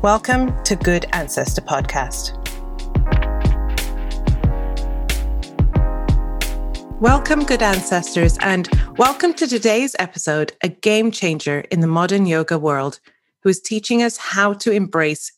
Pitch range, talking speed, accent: 160-205 Hz, 110 wpm, British